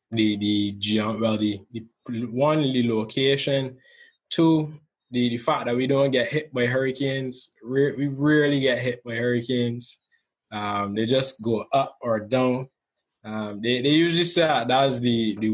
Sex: male